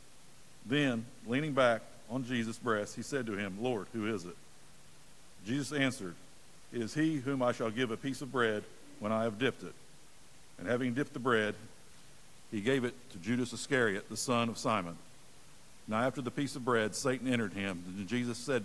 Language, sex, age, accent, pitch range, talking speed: English, male, 60-79, American, 115-140 Hz, 190 wpm